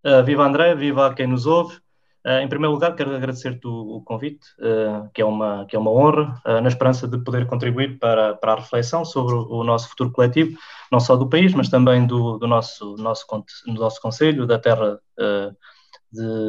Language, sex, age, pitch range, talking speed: Portuguese, male, 20-39, 120-145 Hz, 185 wpm